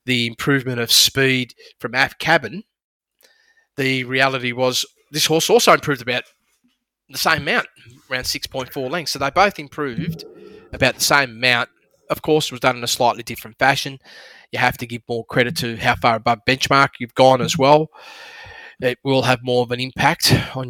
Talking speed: 180 wpm